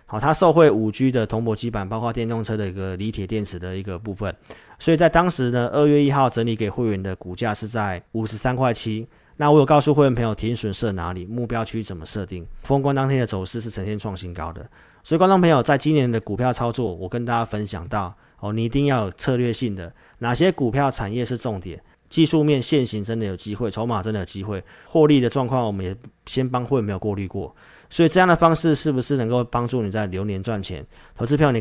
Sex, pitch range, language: male, 105-130 Hz, Chinese